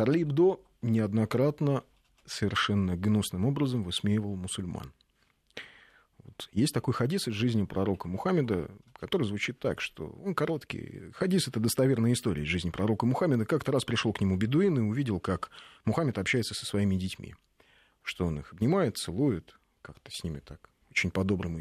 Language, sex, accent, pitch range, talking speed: Russian, male, native, 90-125 Hz, 145 wpm